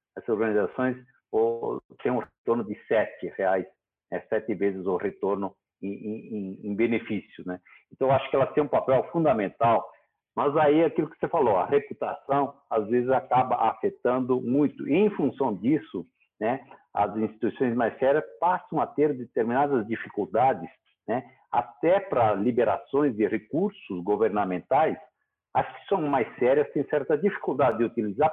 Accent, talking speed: Brazilian, 140 wpm